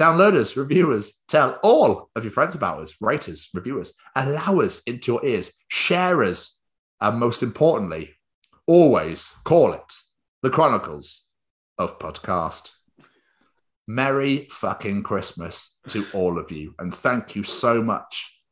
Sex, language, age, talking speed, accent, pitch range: male, English, 30-49, 130 wpm, British, 90-110 Hz